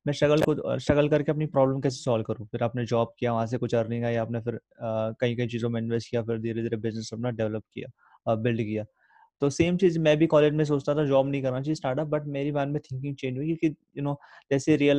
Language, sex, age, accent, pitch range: Hindi, male, 20-39, native, 120-150 Hz